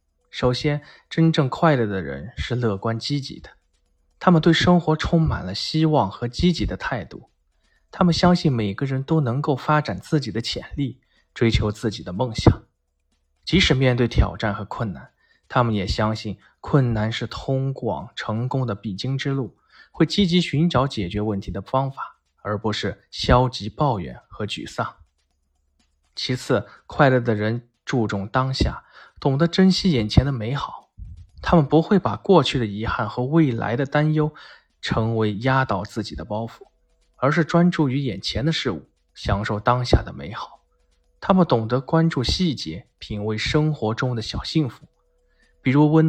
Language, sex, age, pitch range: Chinese, male, 20-39, 100-145 Hz